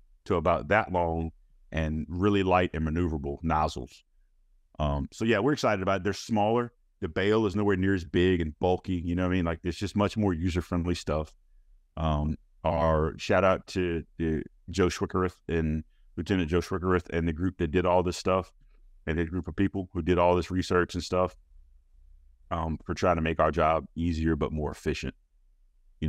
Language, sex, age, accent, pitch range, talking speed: English, male, 40-59, American, 75-90 Hz, 190 wpm